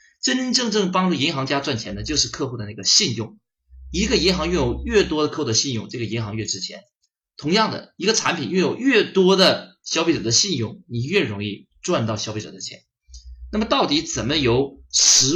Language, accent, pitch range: Chinese, native, 105-155 Hz